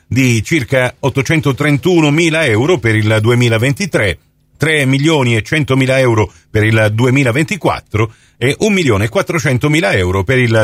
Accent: native